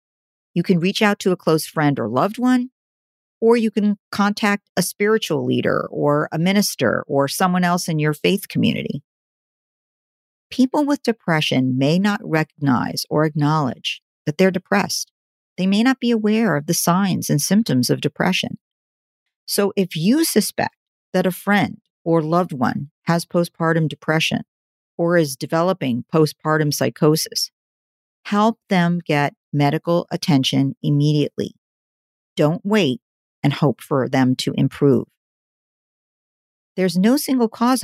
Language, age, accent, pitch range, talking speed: English, 50-69, American, 150-205 Hz, 140 wpm